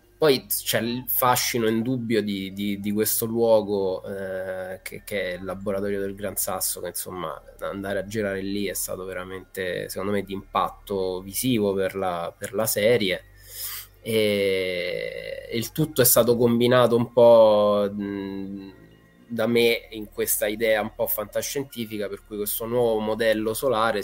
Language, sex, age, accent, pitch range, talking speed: Italian, male, 20-39, native, 95-110 Hz, 155 wpm